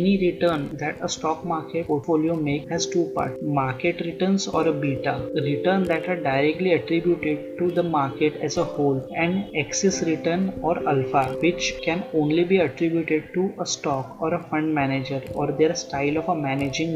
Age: 20-39